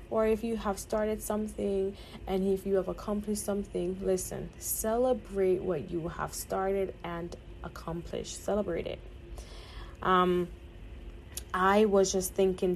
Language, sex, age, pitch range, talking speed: English, female, 20-39, 170-210 Hz, 125 wpm